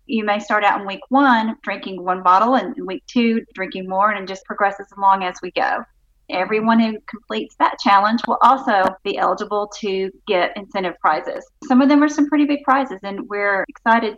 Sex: female